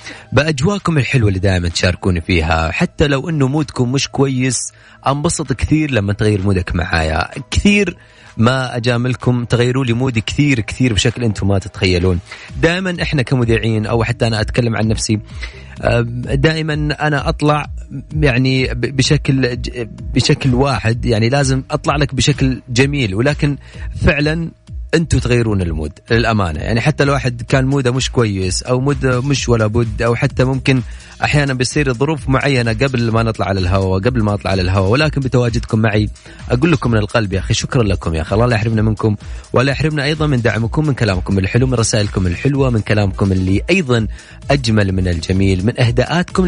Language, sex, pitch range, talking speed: Arabic, male, 105-135 Hz, 160 wpm